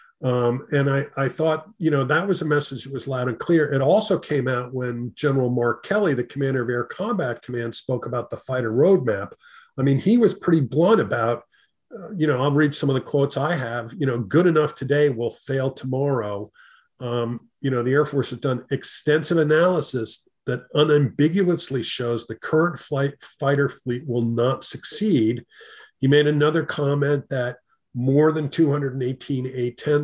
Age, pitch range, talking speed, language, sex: 40-59, 125-155 Hz, 180 wpm, English, male